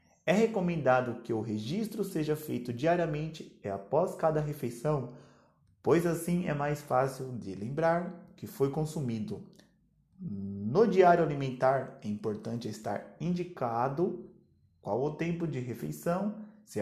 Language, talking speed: Portuguese, 125 wpm